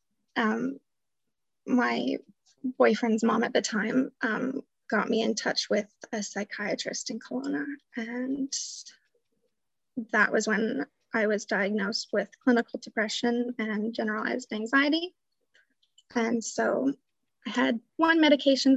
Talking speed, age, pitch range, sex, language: 115 wpm, 20-39, 220-260 Hz, female, English